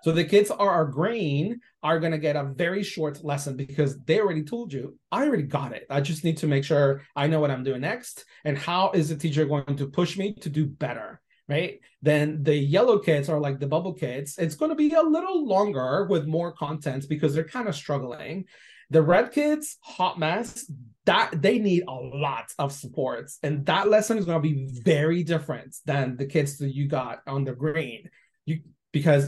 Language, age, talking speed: English, 30-49, 210 wpm